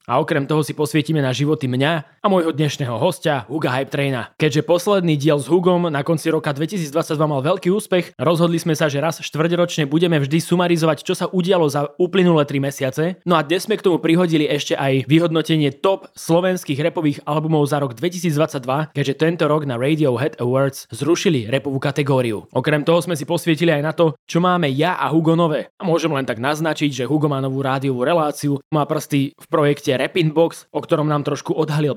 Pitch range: 145-170 Hz